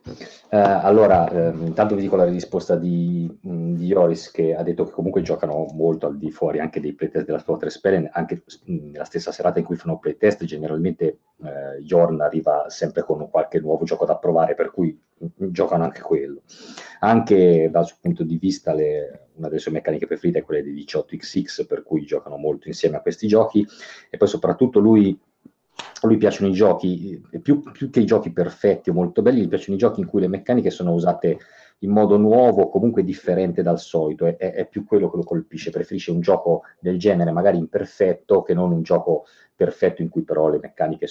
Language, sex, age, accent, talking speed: Italian, male, 40-59, native, 200 wpm